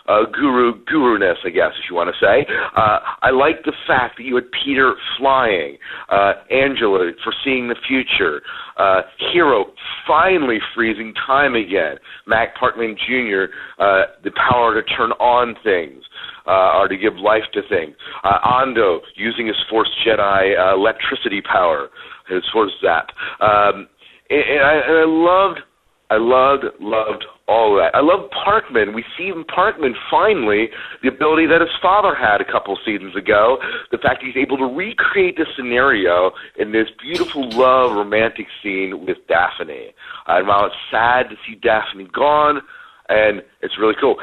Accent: American